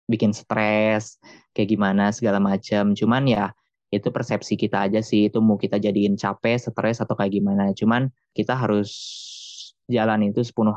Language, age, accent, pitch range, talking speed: Indonesian, 20-39, native, 100-115 Hz, 155 wpm